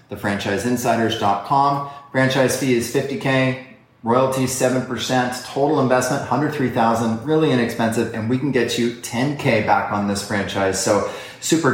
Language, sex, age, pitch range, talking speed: English, male, 30-49, 105-130 Hz, 125 wpm